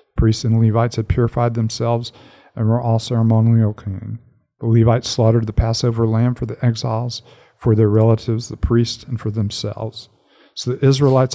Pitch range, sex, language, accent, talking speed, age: 110-120 Hz, male, English, American, 165 wpm, 50-69